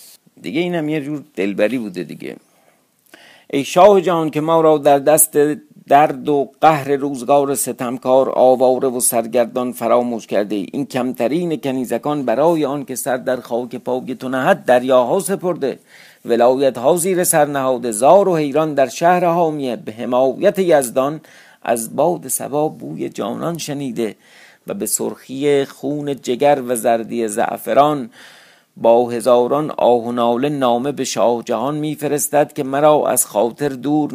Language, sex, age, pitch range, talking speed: Persian, male, 50-69, 120-150 Hz, 140 wpm